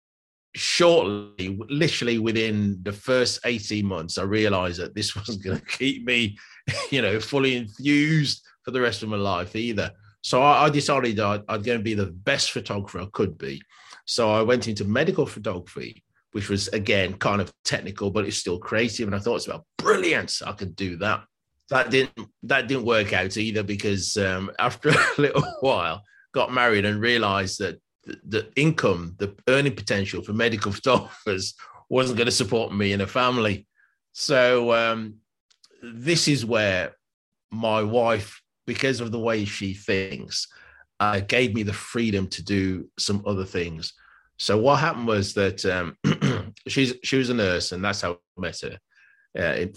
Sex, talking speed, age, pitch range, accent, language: male, 170 wpm, 30-49, 100-120 Hz, British, English